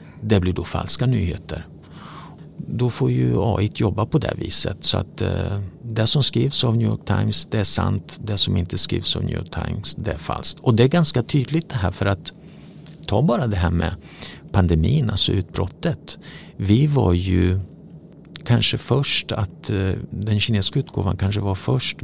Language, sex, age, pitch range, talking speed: English, male, 50-69, 95-145 Hz, 175 wpm